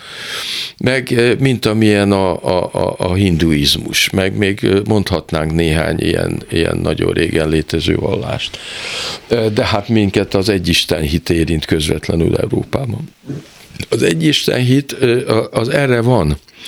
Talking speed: 115 wpm